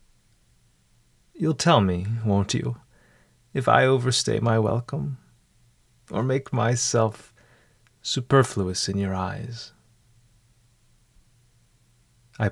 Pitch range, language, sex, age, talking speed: 100-120 Hz, English, male, 30-49, 85 wpm